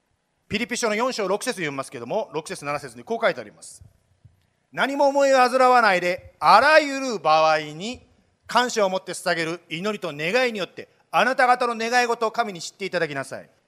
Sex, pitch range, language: male, 185-270 Hz, Japanese